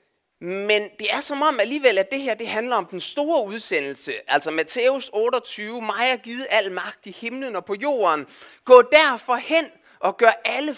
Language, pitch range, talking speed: Danish, 185-255 Hz, 185 wpm